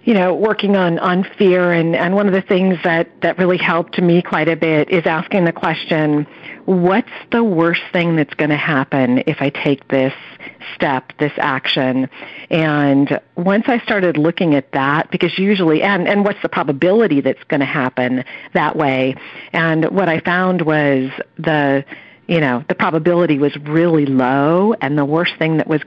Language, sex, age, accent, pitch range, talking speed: English, female, 50-69, American, 140-175 Hz, 175 wpm